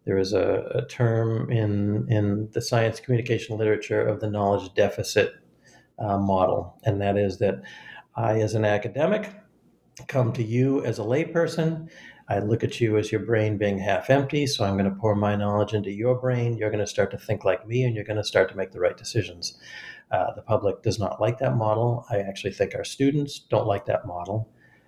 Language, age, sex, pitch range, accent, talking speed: English, 50-69, male, 105-130 Hz, American, 205 wpm